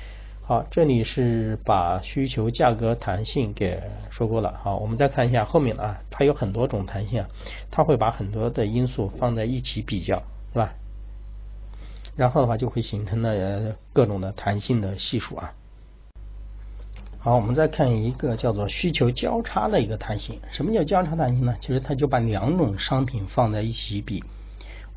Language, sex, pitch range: Chinese, male, 100-130 Hz